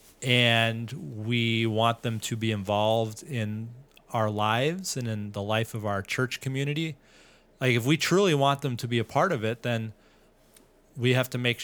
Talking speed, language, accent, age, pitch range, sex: 180 wpm, English, American, 30-49, 110-130 Hz, male